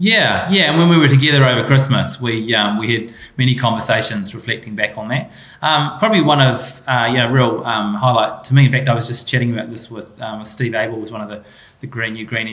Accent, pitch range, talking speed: Australian, 110-130 Hz, 250 wpm